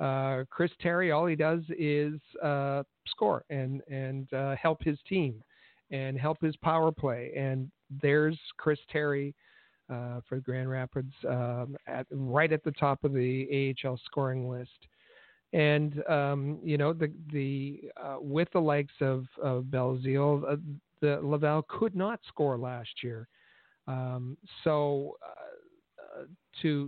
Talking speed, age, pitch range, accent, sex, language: 145 wpm, 50-69, 130-155 Hz, American, male, English